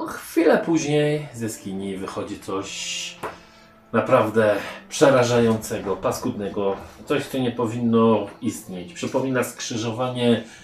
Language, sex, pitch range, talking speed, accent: Polish, male, 110-130 Hz, 95 wpm, native